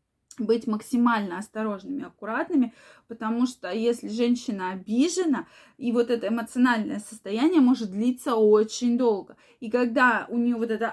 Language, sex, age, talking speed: Russian, female, 20-39, 135 wpm